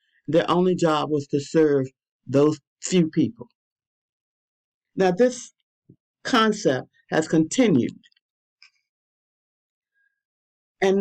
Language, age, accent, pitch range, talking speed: English, 50-69, American, 155-205 Hz, 80 wpm